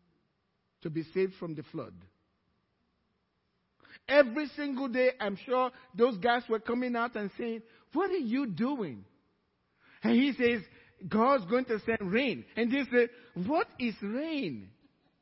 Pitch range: 195-260 Hz